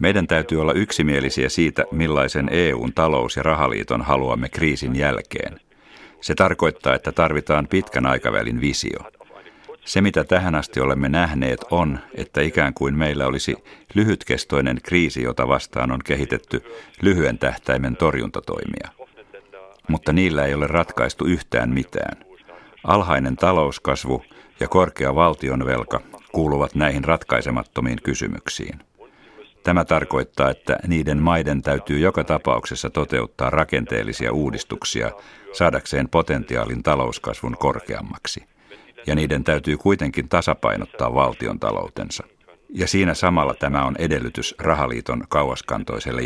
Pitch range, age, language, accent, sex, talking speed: 65-80 Hz, 50-69, Finnish, native, male, 110 wpm